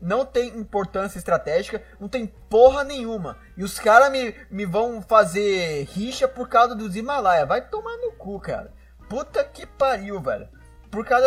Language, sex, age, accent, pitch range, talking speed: Portuguese, male, 20-39, Brazilian, 150-210 Hz, 165 wpm